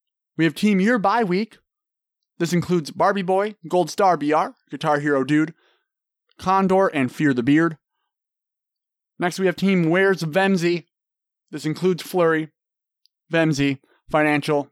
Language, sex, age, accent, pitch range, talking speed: English, male, 30-49, American, 145-195 Hz, 130 wpm